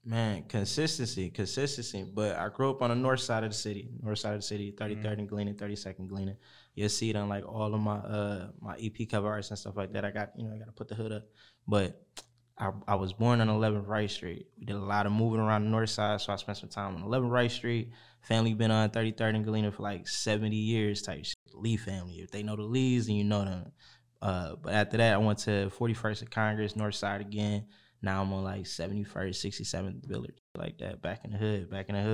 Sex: male